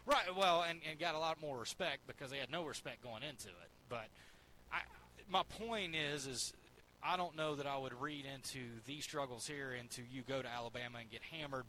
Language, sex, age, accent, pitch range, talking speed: English, male, 30-49, American, 120-150 Hz, 215 wpm